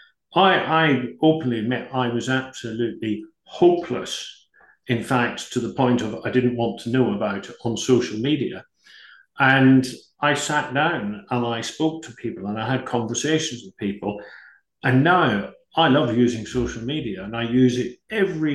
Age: 50-69